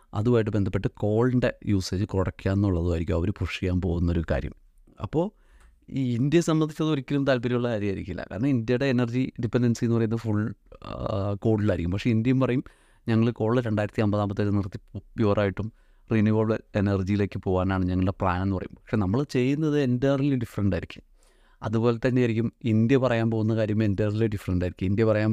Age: 30-49